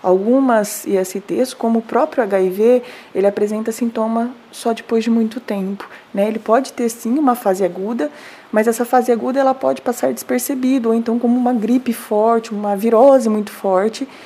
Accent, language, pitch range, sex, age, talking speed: Brazilian, Portuguese, 205-250 Hz, female, 20-39, 170 wpm